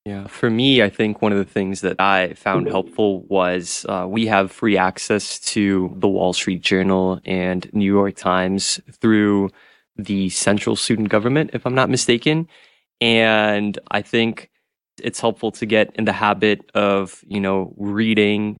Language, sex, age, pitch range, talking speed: English, male, 20-39, 100-115 Hz, 165 wpm